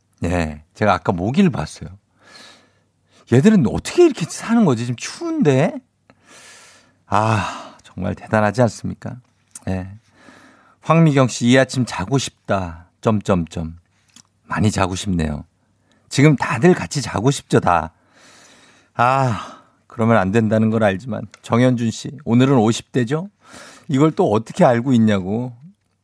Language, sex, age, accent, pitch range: Korean, male, 50-69, native, 100-155 Hz